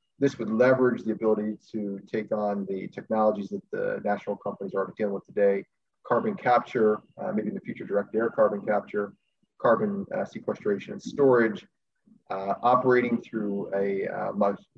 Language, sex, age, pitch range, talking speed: English, male, 30-49, 100-115 Hz, 165 wpm